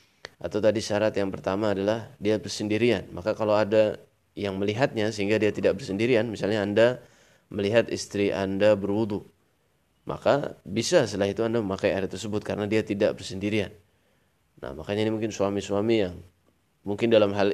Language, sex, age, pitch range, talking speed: Indonesian, male, 20-39, 100-110 Hz, 150 wpm